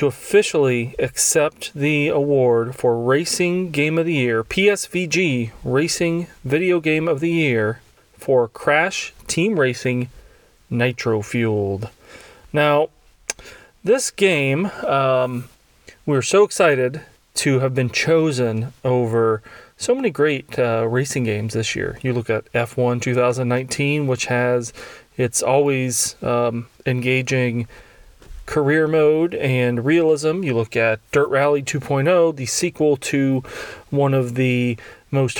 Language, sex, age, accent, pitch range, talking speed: English, male, 30-49, American, 125-145 Hz, 120 wpm